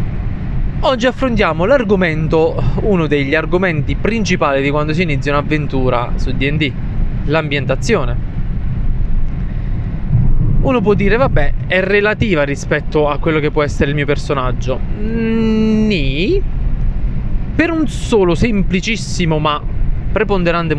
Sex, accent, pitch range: male, native, 140-190 Hz